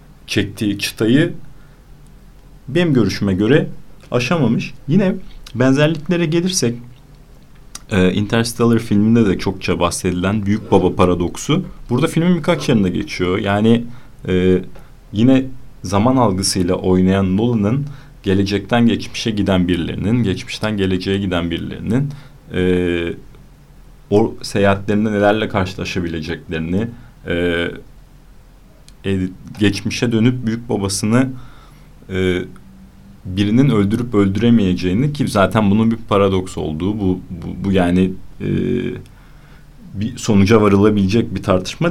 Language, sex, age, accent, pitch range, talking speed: Turkish, male, 40-59, native, 95-130 Hz, 90 wpm